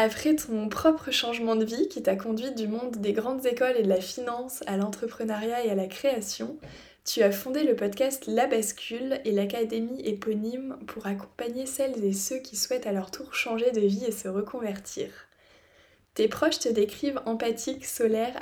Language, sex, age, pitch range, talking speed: French, female, 20-39, 205-245 Hz, 180 wpm